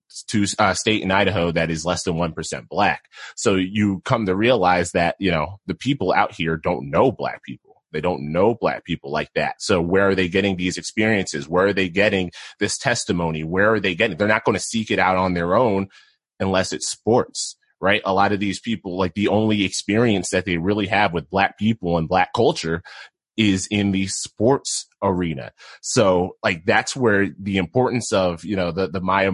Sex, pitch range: male, 90-100 Hz